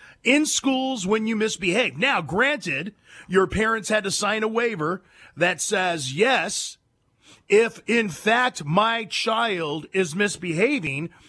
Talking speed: 130 wpm